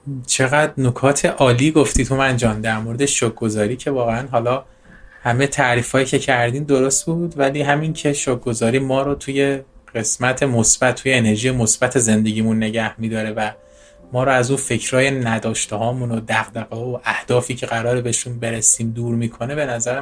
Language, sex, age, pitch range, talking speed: Persian, male, 20-39, 120-155 Hz, 155 wpm